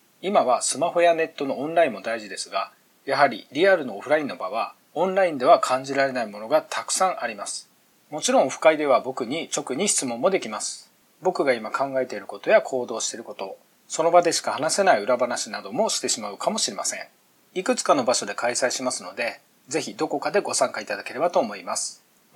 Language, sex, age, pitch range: Japanese, male, 40-59, 135-185 Hz